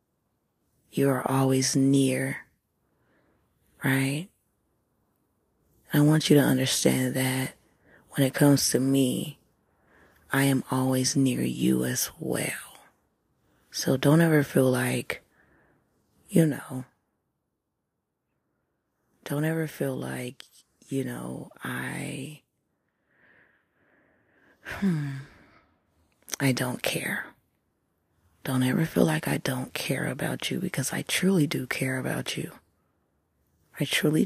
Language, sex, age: English, female, 30-49